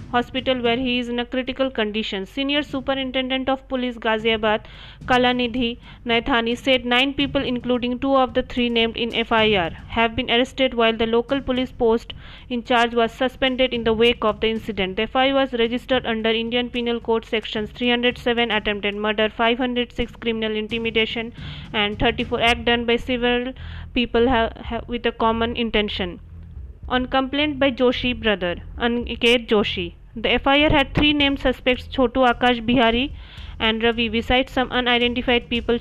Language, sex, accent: Hindi, female, native